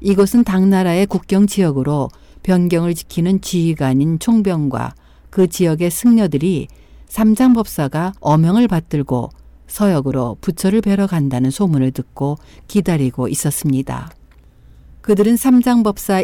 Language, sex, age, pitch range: Korean, female, 60-79, 135-200 Hz